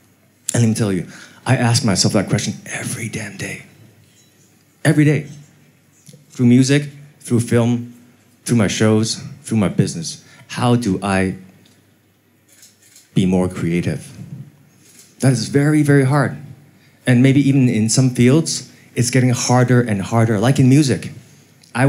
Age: 30-49